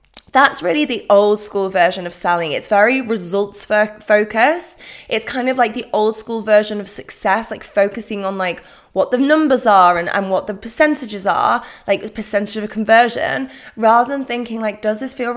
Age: 20-39